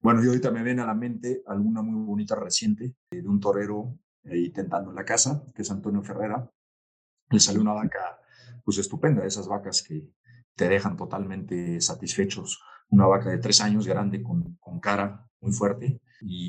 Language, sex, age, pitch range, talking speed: Spanish, male, 40-59, 100-130 Hz, 180 wpm